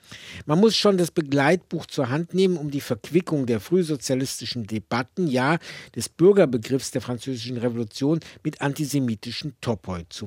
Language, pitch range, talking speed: German, 115-150 Hz, 140 wpm